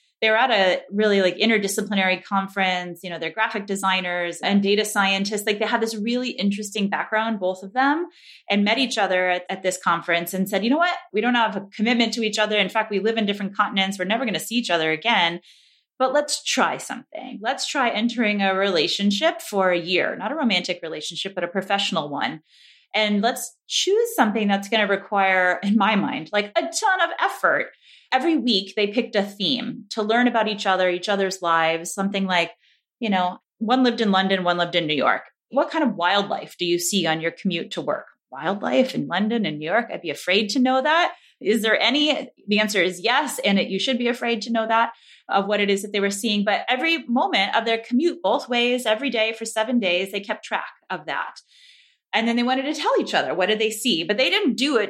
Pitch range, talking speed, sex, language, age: 185-245 Hz, 225 wpm, female, English, 30-49